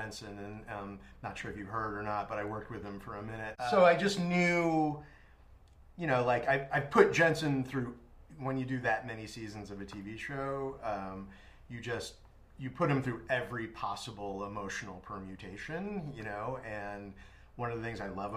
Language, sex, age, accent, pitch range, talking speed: English, male, 30-49, American, 100-130 Hz, 205 wpm